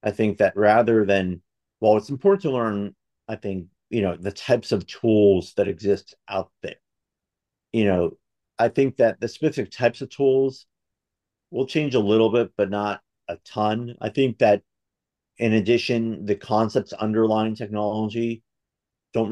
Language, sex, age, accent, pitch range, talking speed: English, male, 50-69, American, 100-115 Hz, 160 wpm